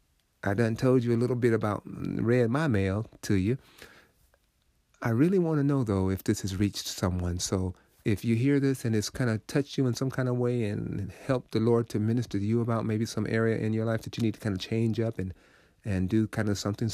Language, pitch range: English, 95-115 Hz